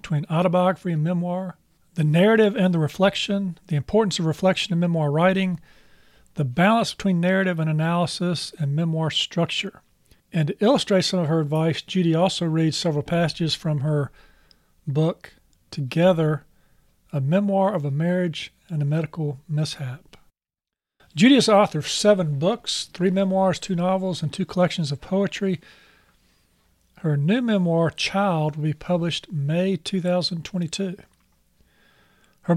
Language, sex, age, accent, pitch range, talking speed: English, male, 50-69, American, 155-190 Hz, 140 wpm